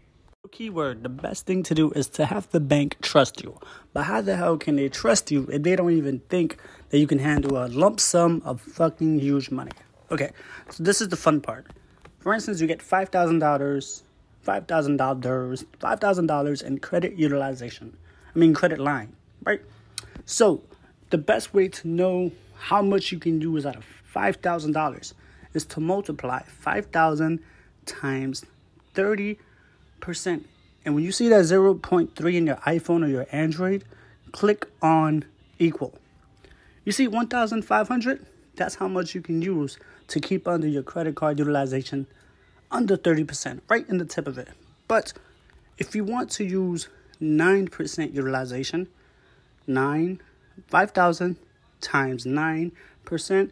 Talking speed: 150 wpm